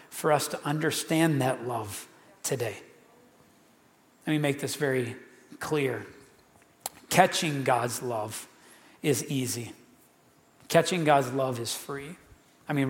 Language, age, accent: English, 40-59, American